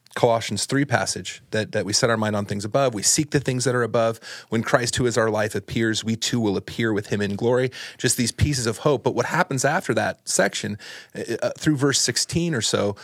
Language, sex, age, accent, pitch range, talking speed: English, male, 30-49, American, 110-135 Hz, 230 wpm